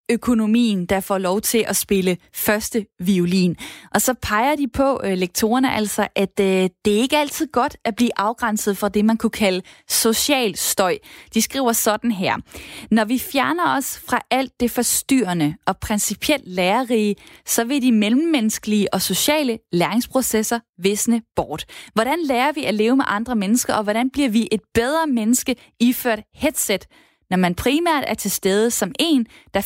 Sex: female